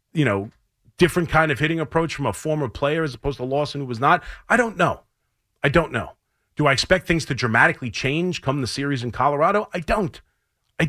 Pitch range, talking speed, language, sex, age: 115-165 Hz, 215 wpm, English, male, 40-59